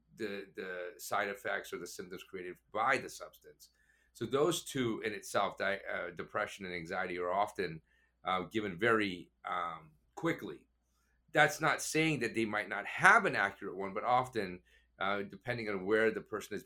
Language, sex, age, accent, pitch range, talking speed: English, male, 40-59, American, 100-120 Hz, 175 wpm